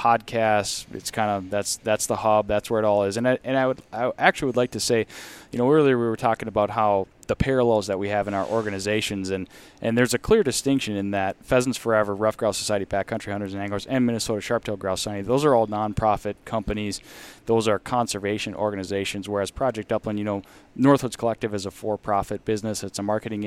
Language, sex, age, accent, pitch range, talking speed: English, male, 10-29, American, 100-120 Hz, 220 wpm